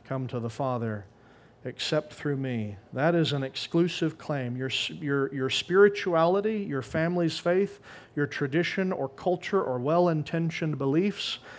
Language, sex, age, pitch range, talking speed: English, male, 40-59, 120-150 Hz, 135 wpm